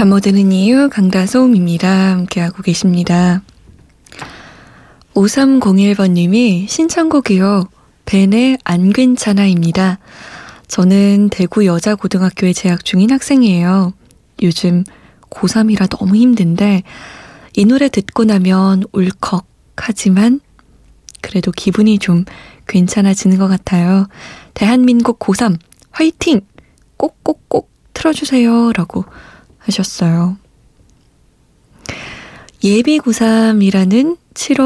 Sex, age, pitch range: female, 20-39, 185-225 Hz